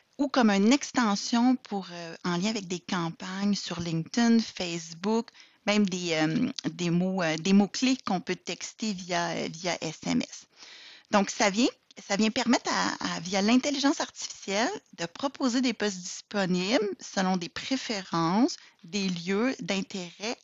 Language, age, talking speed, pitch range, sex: French, 30-49, 150 wpm, 185-240 Hz, female